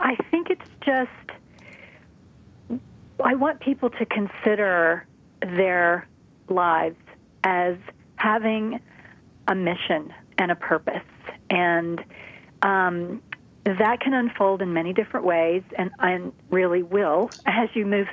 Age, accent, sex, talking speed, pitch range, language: 40-59, American, female, 115 wpm, 180-230 Hz, English